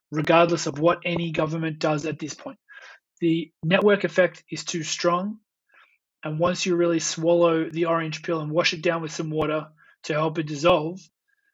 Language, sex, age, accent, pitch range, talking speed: English, male, 20-39, Australian, 165-180 Hz, 175 wpm